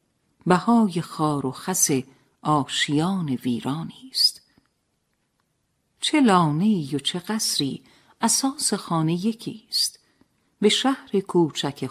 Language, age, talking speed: Persian, 50-69, 90 wpm